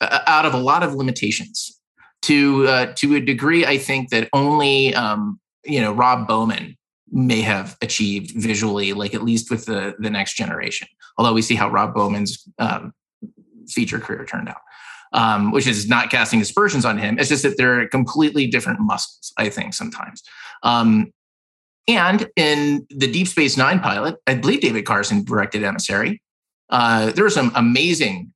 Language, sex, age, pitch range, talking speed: English, male, 30-49, 115-170 Hz, 170 wpm